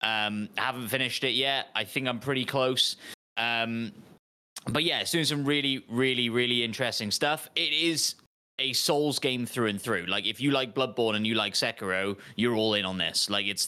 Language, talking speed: English, 195 wpm